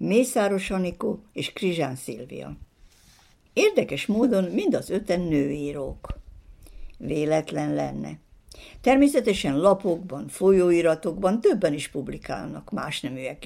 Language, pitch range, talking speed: Hungarian, 155-225 Hz, 95 wpm